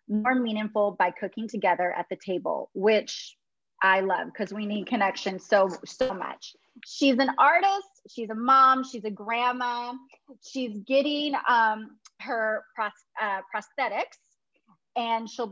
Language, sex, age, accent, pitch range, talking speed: English, female, 30-49, American, 205-265 Hz, 135 wpm